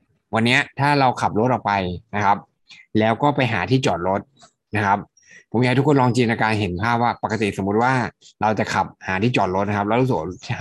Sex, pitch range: male, 100-130 Hz